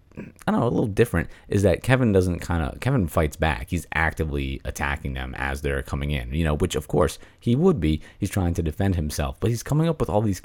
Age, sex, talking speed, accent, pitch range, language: 30-49, male, 245 wpm, American, 75-90 Hz, English